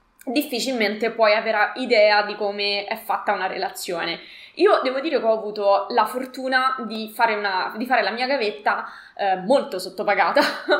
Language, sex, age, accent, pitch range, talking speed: Italian, female, 20-39, native, 205-250 Hz, 150 wpm